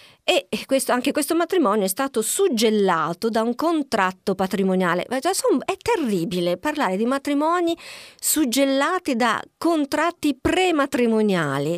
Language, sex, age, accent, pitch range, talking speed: Italian, female, 40-59, native, 190-280 Hz, 100 wpm